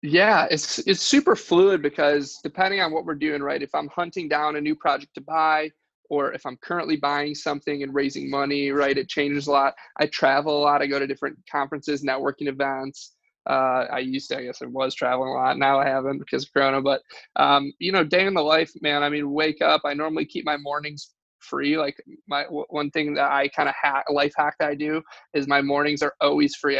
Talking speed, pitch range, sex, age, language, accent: 225 wpm, 140-150 Hz, male, 20-39, English, American